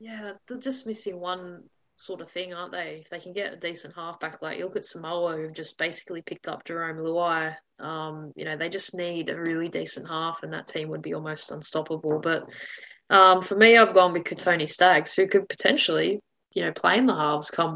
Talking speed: 215 wpm